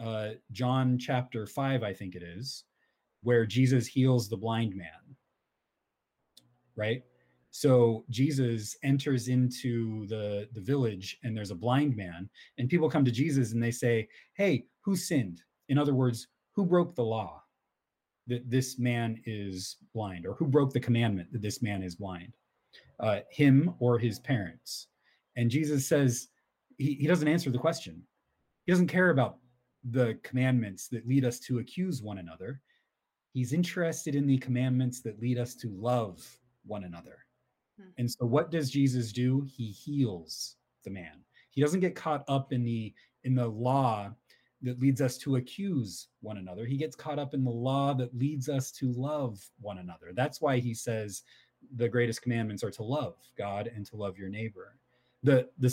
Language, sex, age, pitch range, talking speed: English, male, 30-49, 110-135 Hz, 170 wpm